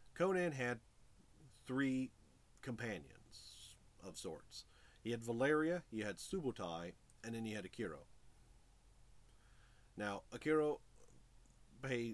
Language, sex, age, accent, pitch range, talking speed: English, male, 40-59, American, 105-140 Hz, 100 wpm